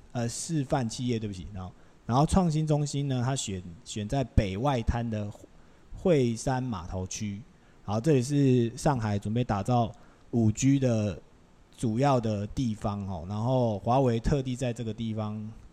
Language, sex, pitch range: Chinese, male, 95-130 Hz